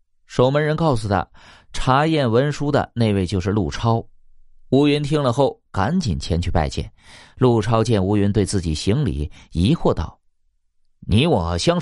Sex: male